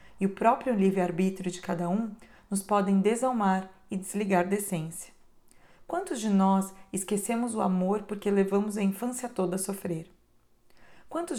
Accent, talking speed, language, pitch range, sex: Brazilian, 140 wpm, Portuguese, 190-215 Hz, female